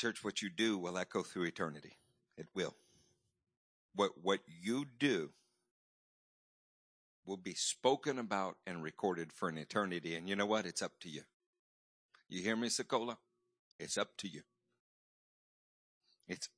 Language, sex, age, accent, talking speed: English, male, 60-79, American, 145 wpm